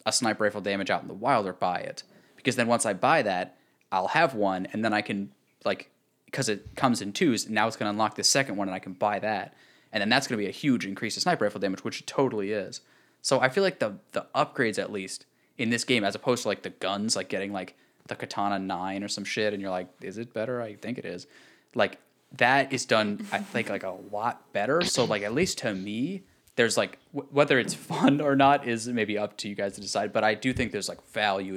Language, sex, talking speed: English, male, 255 wpm